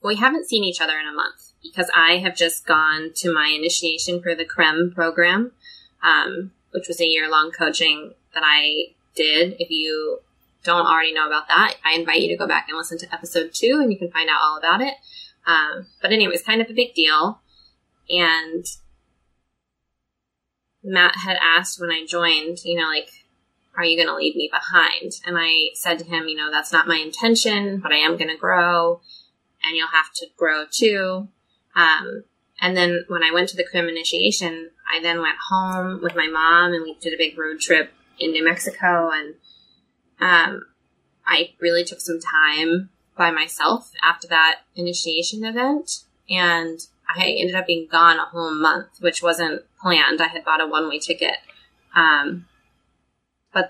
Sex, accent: female, American